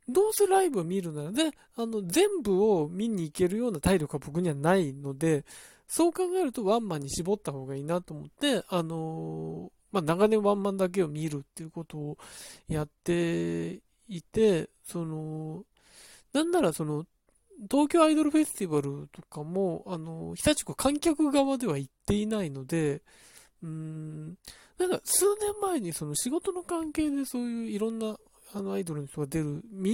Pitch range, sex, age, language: 155-240 Hz, male, 20-39, Japanese